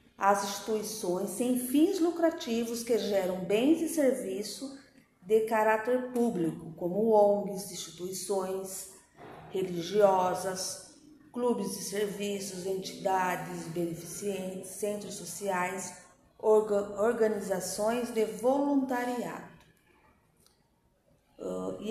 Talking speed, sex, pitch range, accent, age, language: 75 wpm, female, 195-255 Hz, Brazilian, 40-59, Portuguese